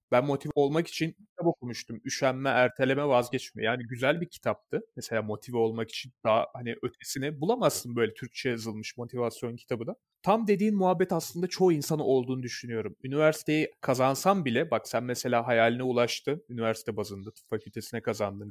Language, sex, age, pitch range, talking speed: Turkish, male, 30-49, 125-170 Hz, 155 wpm